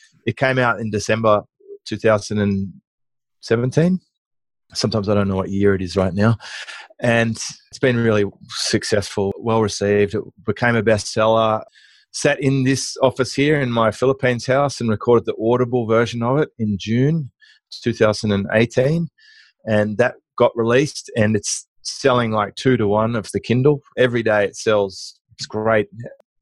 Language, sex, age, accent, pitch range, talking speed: English, male, 30-49, Australian, 105-130 Hz, 150 wpm